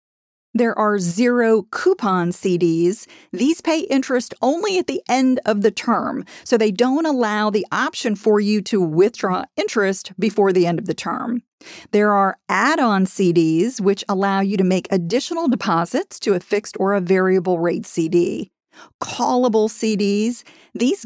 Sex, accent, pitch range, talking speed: female, American, 185-240 Hz, 150 wpm